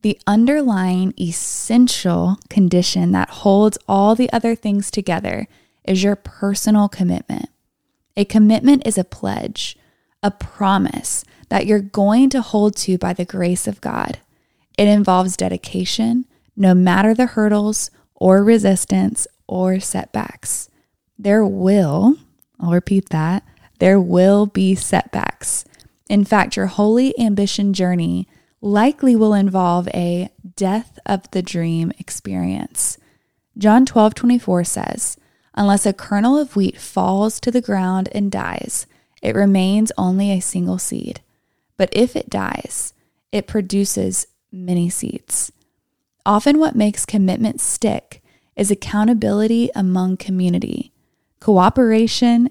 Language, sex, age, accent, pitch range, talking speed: English, female, 20-39, American, 185-220 Hz, 125 wpm